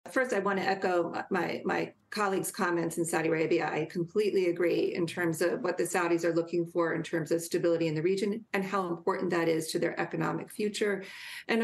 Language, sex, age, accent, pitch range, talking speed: English, female, 40-59, American, 175-215 Hz, 210 wpm